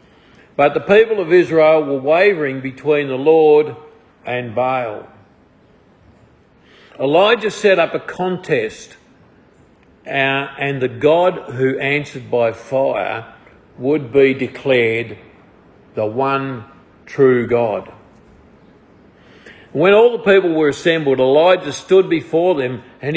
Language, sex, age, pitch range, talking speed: English, male, 50-69, 125-160 Hz, 110 wpm